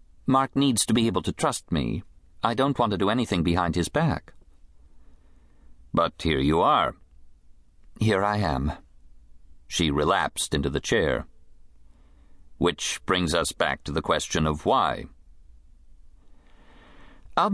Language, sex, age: English, male, 50-69